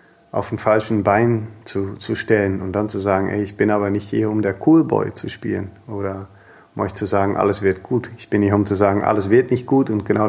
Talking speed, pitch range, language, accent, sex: 245 wpm, 100-115 Hz, German, German, male